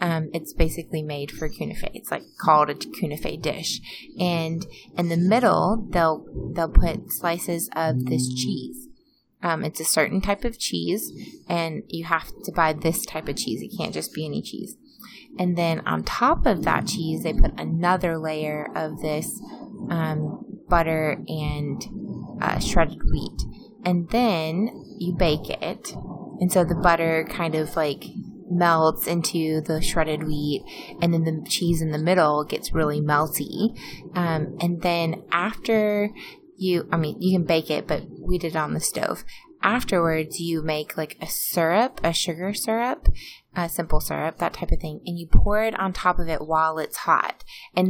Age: 20-39